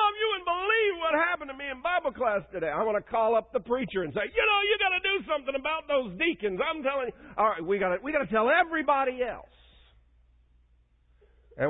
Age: 50-69